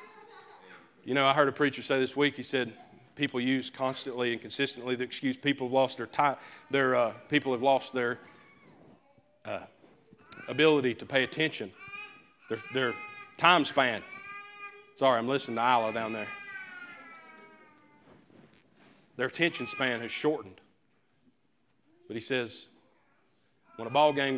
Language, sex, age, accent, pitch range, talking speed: English, male, 40-59, American, 125-175 Hz, 140 wpm